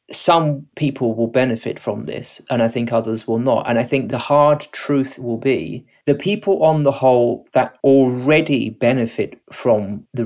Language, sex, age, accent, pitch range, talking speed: English, male, 20-39, British, 115-135 Hz, 175 wpm